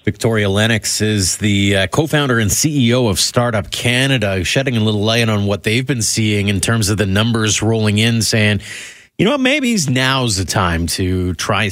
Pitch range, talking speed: 95-120 Hz, 190 wpm